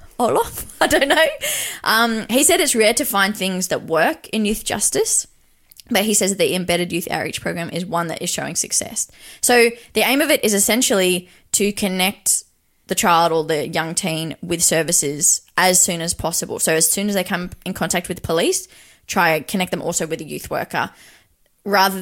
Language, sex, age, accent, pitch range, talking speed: English, female, 20-39, Australian, 165-205 Hz, 200 wpm